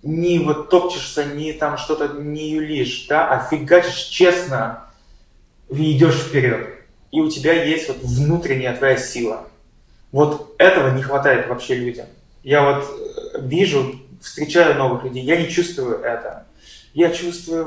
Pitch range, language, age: 130-165 Hz, Russian, 20-39